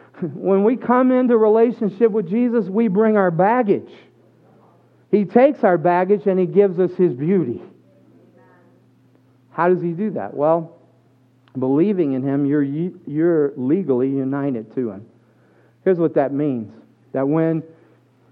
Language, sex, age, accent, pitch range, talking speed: English, male, 50-69, American, 140-210 Hz, 140 wpm